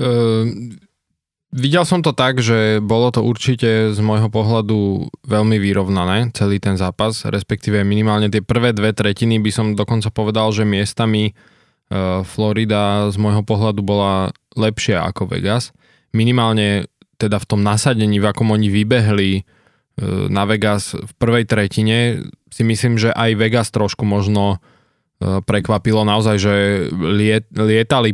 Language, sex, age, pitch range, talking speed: Slovak, male, 20-39, 100-115 Hz, 135 wpm